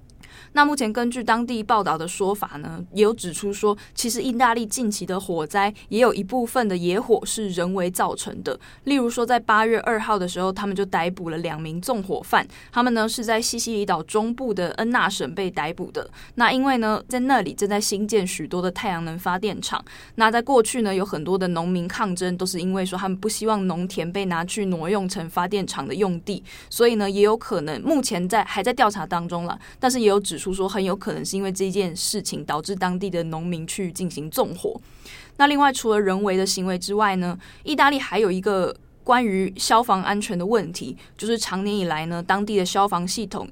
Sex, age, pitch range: female, 20-39, 180-220 Hz